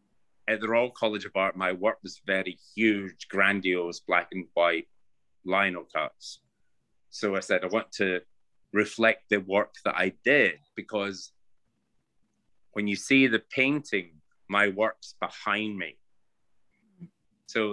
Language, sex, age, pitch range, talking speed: English, male, 30-49, 95-125 Hz, 135 wpm